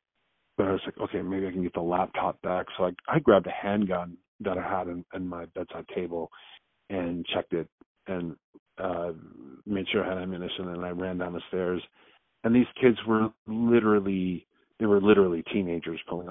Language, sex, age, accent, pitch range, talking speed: English, male, 40-59, American, 85-100 Hz, 190 wpm